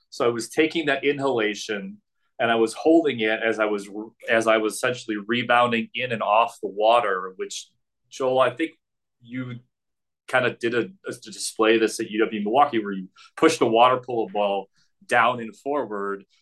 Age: 30-49